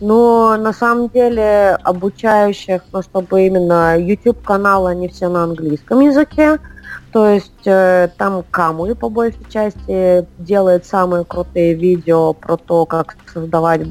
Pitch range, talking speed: 165-190 Hz, 135 wpm